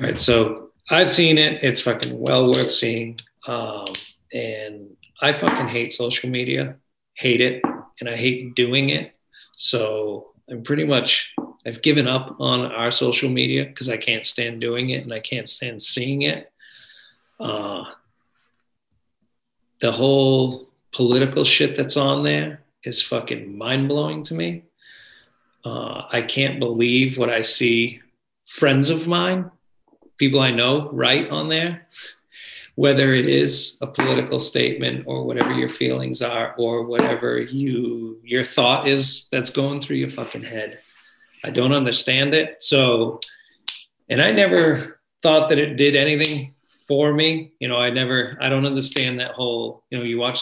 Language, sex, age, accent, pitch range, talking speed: English, male, 40-59, American, 115-140 Hz, 150 wpm